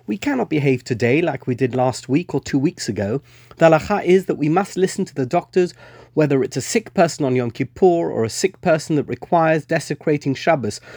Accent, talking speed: British, 210 wpm